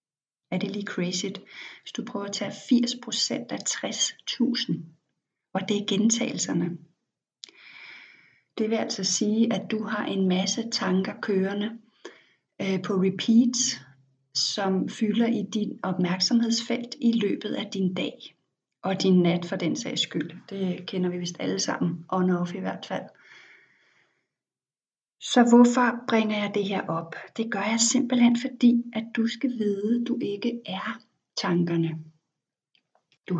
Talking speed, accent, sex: 145 wpm, native, female